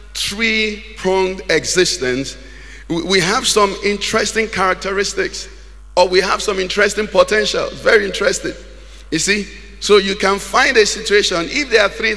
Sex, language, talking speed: male, English, 130 wpm